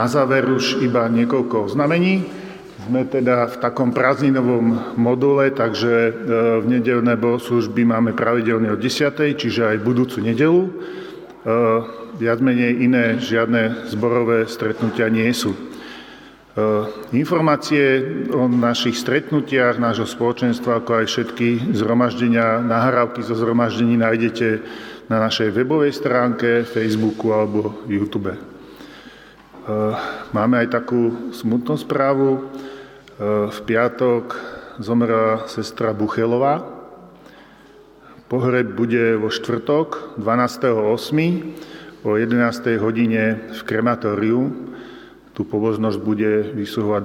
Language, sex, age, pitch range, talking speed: Slovak, male, 40-59, 110-125 Hz, 95 wpm